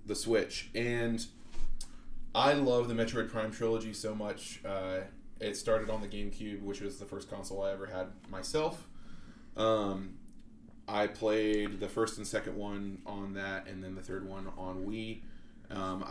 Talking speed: 165 wpm